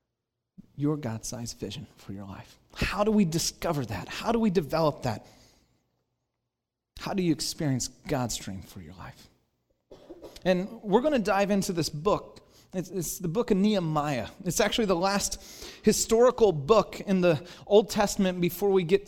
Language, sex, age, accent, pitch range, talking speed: English, male, 30-49, American, 135-210 Hz, 165 wpm